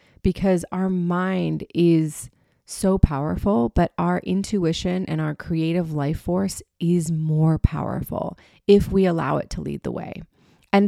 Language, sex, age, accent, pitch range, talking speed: English, female, 30-49, American, 160-185 Hz, 145 wpm